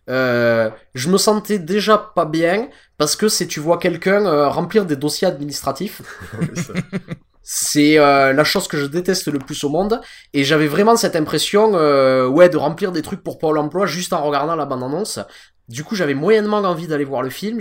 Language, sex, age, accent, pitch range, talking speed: French, male, 20-39, French, 135-190 Hz, 200 wpm